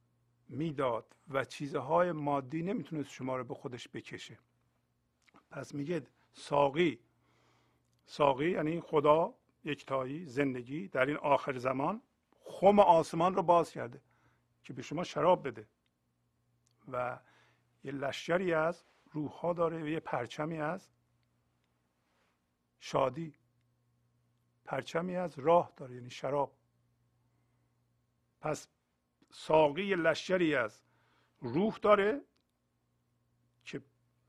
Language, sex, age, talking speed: Persian, male, 50-69, 100 wpm